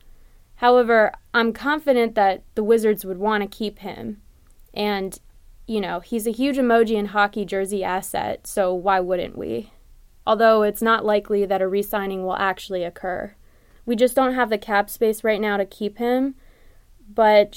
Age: 20-39